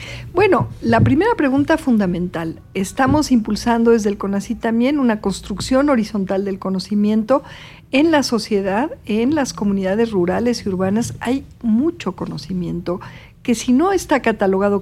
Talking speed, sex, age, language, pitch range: 135 wpm, female, 50-69, Spanish, 185-245 Hz